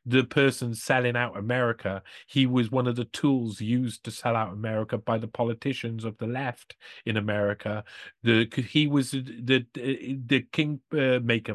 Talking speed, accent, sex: 160 wpm, British, male